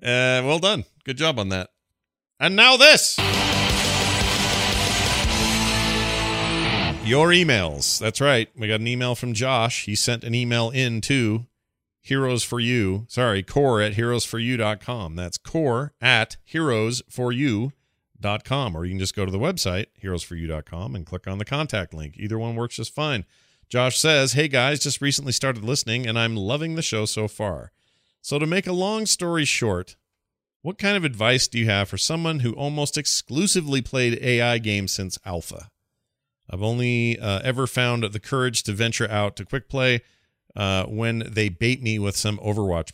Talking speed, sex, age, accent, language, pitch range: 165 wpm, male, 40-59, American, English, 100-130 Hz